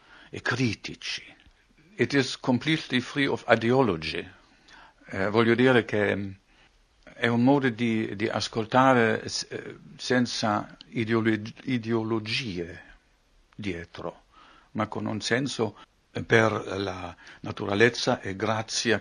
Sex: male